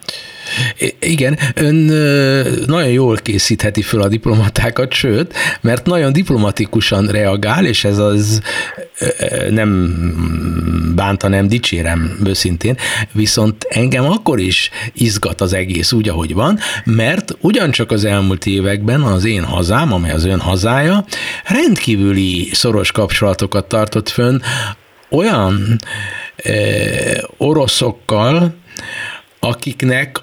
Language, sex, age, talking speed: Hungarian, male, 60-79, 105 wpm